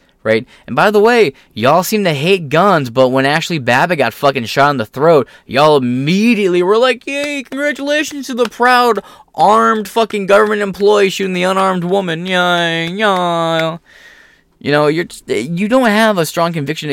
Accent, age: American, 20-39